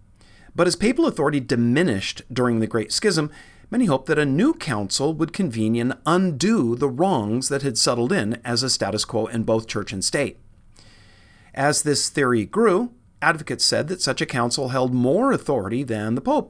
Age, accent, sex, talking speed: 40-59, American, male, 180 wpm